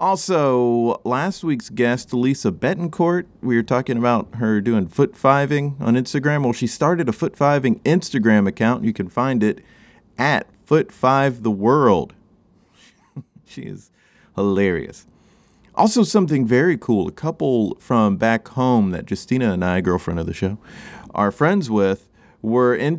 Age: 30-49